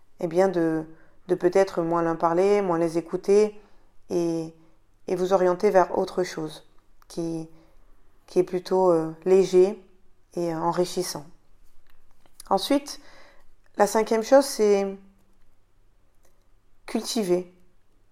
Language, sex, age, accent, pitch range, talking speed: French, female, 20-39, French, 170-195 Hz, 100 wpm